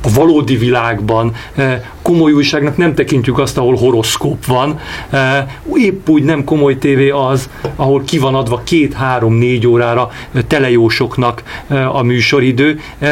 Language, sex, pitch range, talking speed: Hungarian, male, 120-145 Hz, 120 wpm